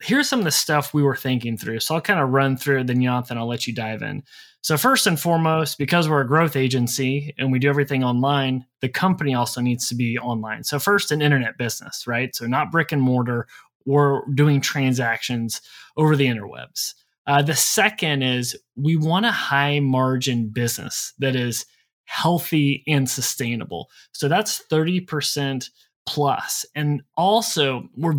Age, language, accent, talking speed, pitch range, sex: 20-39, English, American, 175 wpm, 125-155 Hz, male